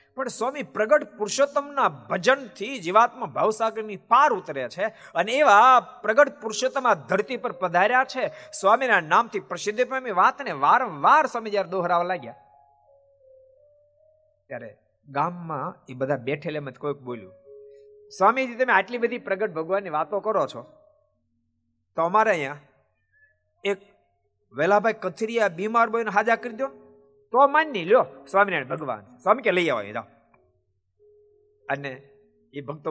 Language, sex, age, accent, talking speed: Gujarati, male, 50-69, native, 65 wpm